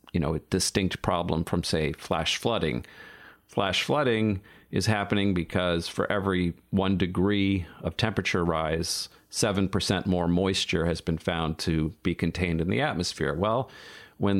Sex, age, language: male, 40-59, English